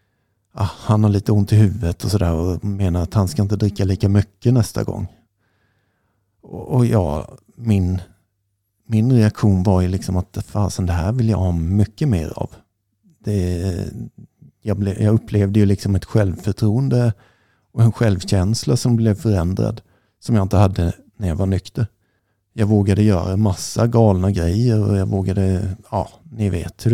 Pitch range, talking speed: 95-110 Hz, 160 wpm